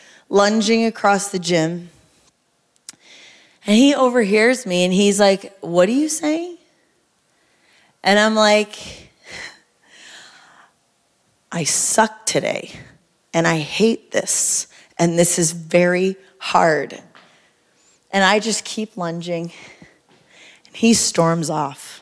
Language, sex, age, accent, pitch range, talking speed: English, female, 30-49, American, 165-210 Hz, 105 wpm